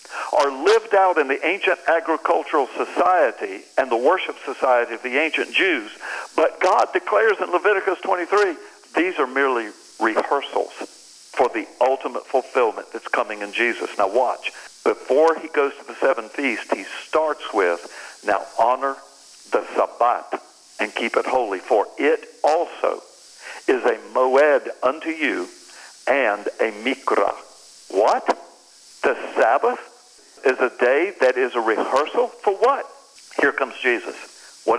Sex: male